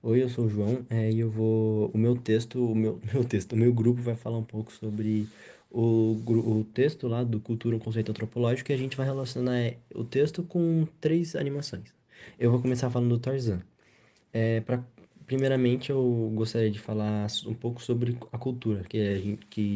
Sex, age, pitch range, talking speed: male, 20-39, 105-120 Hz, 195 wpm